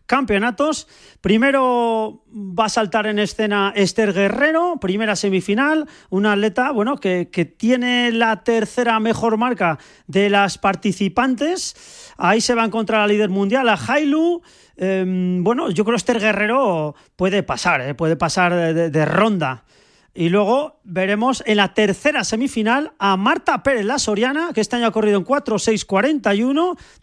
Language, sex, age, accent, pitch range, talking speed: Spanish, male, 40-59, Spanish, 195-245 Hz, 155 wpm